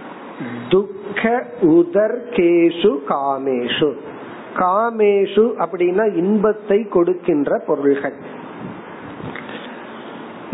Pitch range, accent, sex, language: 160-210 Hz, native, male, Tamil